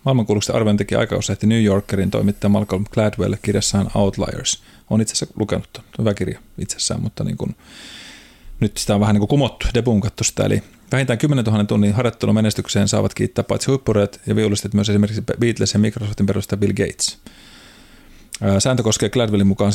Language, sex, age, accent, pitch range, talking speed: Finnish, male, 30-49, native, 100-110 Hz, 165 wpm